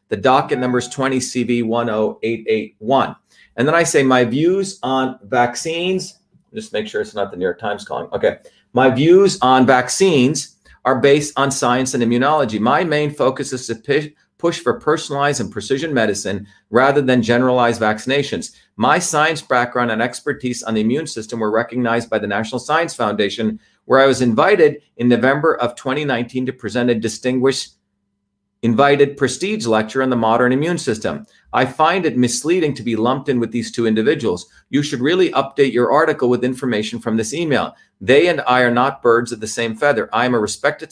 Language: English